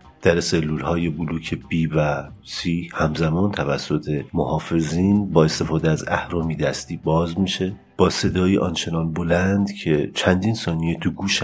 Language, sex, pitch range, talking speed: Persian, male, 80-95 Hz, 135 wpm